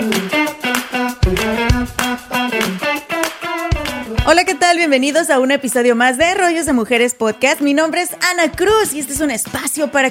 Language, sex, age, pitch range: Spanish, female, 30-49, 225-290 Hz